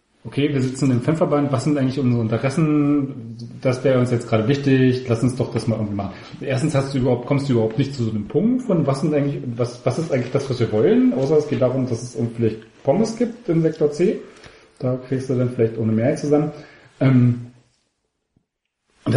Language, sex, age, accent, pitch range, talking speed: German, male, 40-59, German, 115-145 Hz, 220 wpm